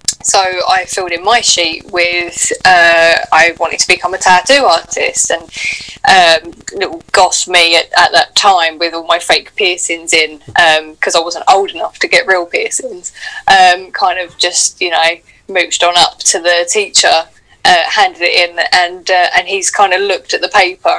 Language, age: English, 10-29